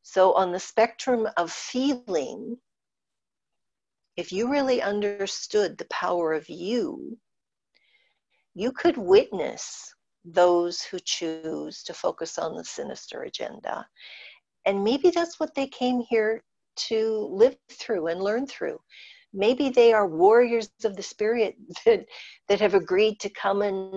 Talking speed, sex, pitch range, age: 135 wpm, female, 185-255 Hz, 50-69